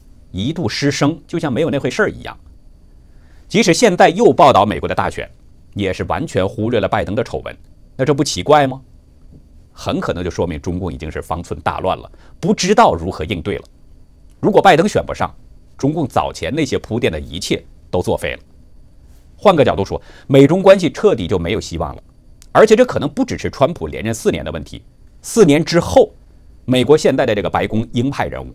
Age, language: 50-69, Chinese